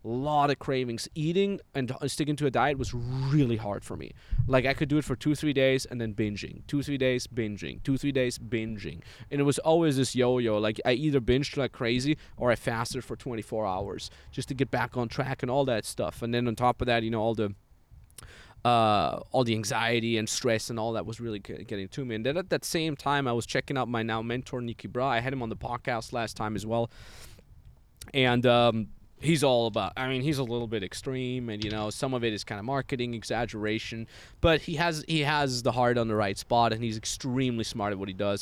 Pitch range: 110-140 Hz